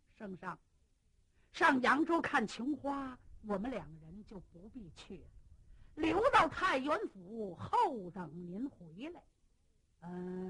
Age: 50-69